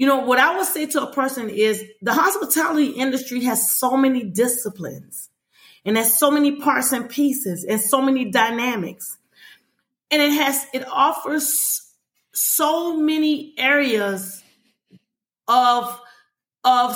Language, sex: English, female